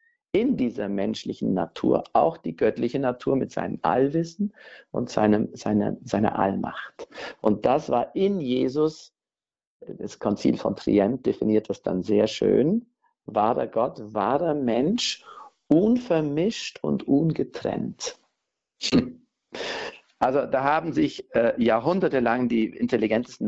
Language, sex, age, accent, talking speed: German, male, 50-69, German, 110 wpm